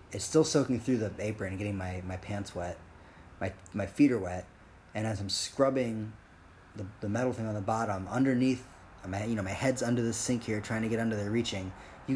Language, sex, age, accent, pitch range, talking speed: English, male, 30-49, American, 95-120 Hz, 225 wpm